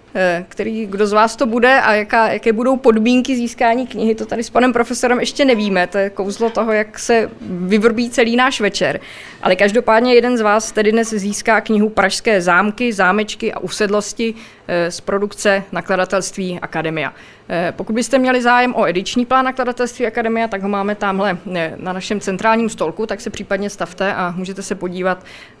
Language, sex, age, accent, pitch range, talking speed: Czech, female, 20-39, native, 180-230 Hz, 170 wpm